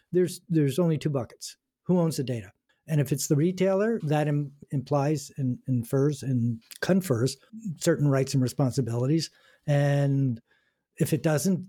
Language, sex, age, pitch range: English, male, 50-69, 130-165 Hz